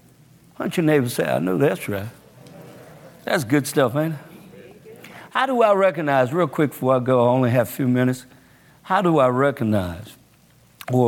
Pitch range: 115-145 Hz